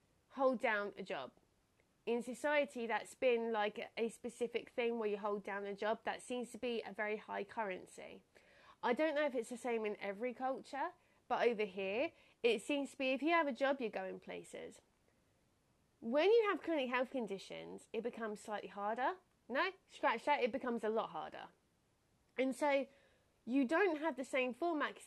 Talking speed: 190 wpm